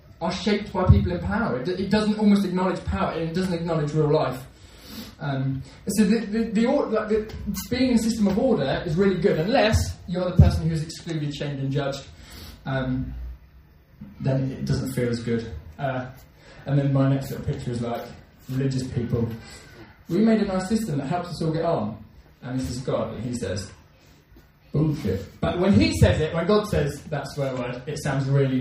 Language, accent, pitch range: English, British, 115-195 Hz